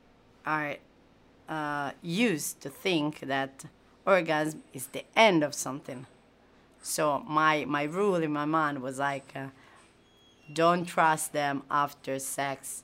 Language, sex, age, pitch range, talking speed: Italian, female, 30-49, 135-160 Hz, 125 wpm